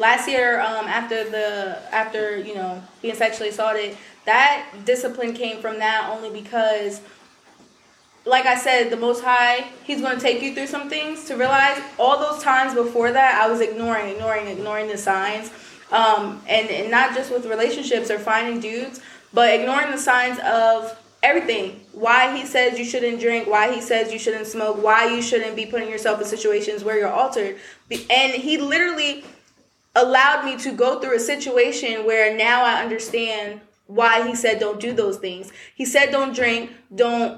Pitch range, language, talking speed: 215-250 Hz, English, 180 wpm